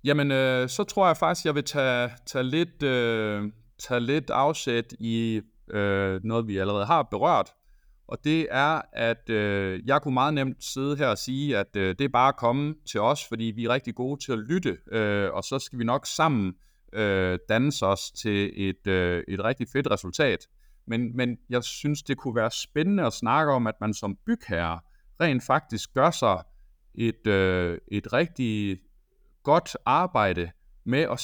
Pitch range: 100-135 Hz